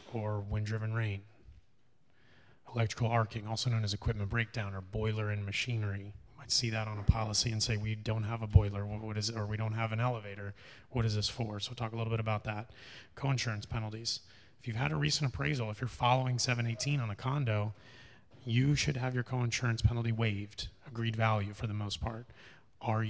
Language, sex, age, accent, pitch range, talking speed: English, male, 30-49, American, 105-120 Hz, 205 wpm